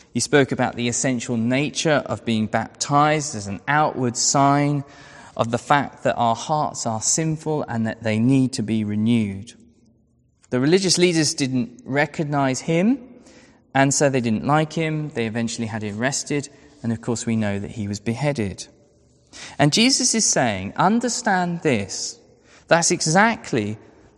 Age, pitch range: 20-39, 115-160 Hz